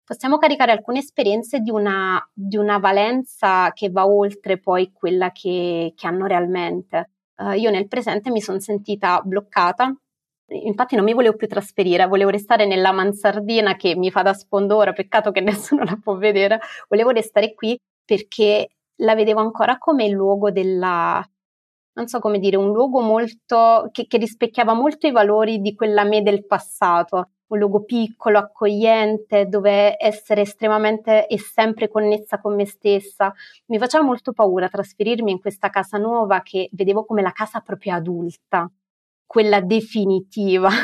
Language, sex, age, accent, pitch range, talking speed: Italian, female, 30-49, native, 195-225 Hz, 155 wpm